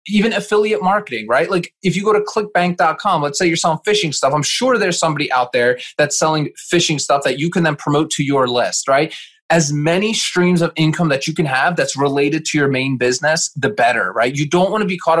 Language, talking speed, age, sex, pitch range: English, 235 wpm, 20-39, male, 145-190 Hz